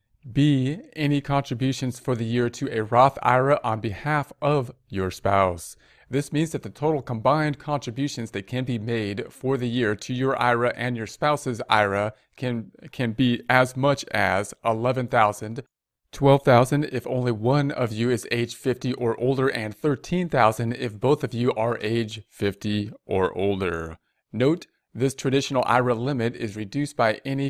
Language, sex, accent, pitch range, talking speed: English, male, American, 110-130 Hz, 160 wpm